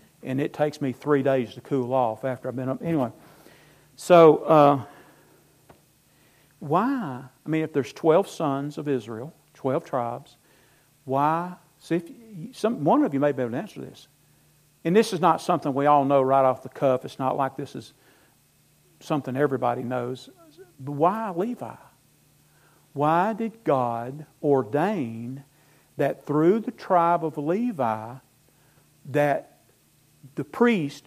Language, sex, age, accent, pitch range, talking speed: English, male, 50-69, American, 140-185 Hz, 140 wpm